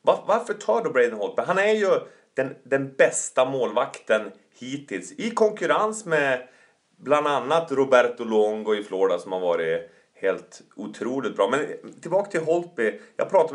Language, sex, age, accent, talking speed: English, male, 30-49, Swedish, 150 wpm